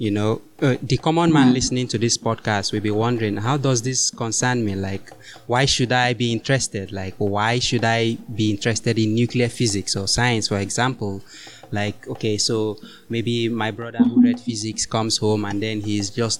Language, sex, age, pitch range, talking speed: English, male, 20-39, 105-125 Hz, 190 wpm